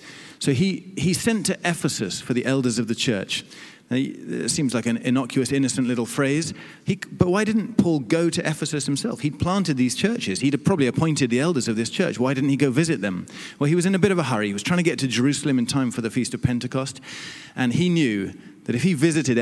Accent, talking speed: British, 245 wpm